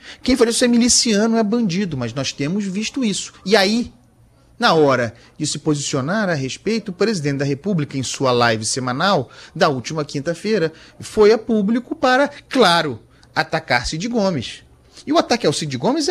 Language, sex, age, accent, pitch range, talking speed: Portuguese, male, 40-59, Brazilian, 170-265 Hz, 170 wpm